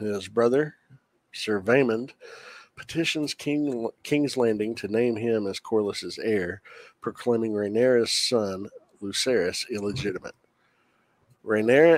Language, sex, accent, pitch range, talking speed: English, male, American, 100-120 Hz, 95 wpm